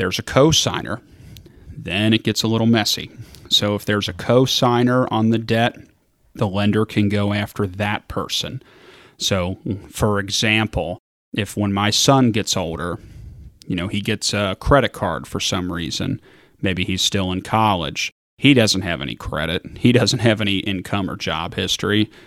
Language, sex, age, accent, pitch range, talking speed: English, male, 30-49, American, 100-115 Hz, 165 wpm